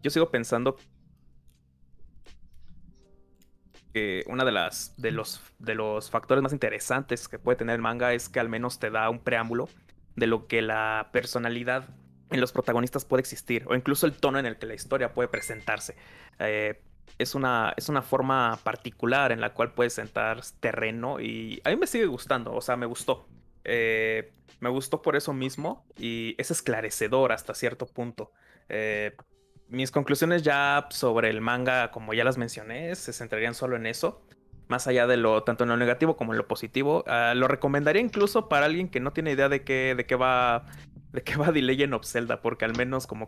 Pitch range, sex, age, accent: 110-135 Hz, male, 20-39, Mexican